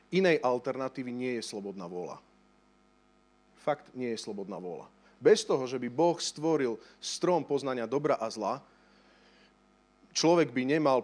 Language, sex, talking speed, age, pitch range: Slovak, male, 135 wpm, 40-59, 130-200 Hz